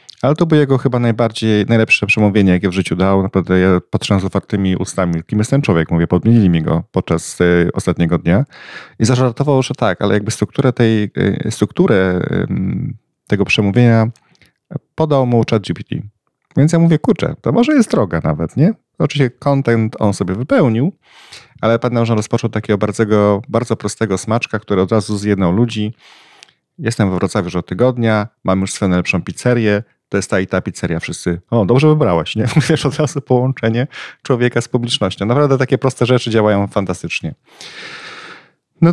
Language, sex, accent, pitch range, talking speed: Polish, male, native, 100-125 Hz, 170 wpm